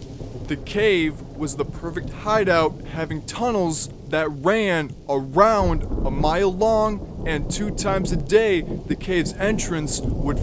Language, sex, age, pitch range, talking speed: English, male, 20-39, 145-185 Hz, 130 wpm